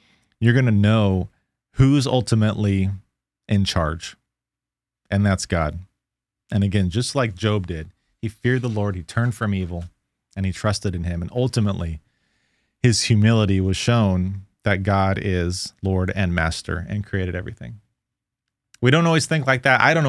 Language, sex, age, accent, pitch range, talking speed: English, male, 30-49, American, 95-115 Hz, 160 wpm